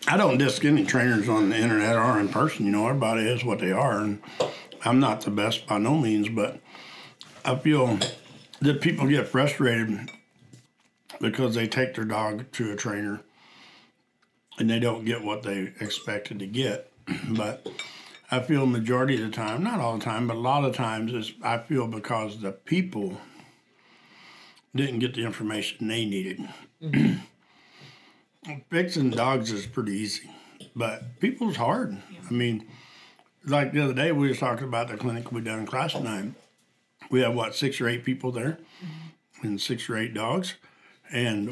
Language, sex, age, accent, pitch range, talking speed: English, male, 60-79, American, 110-135 Hz, 170 wpm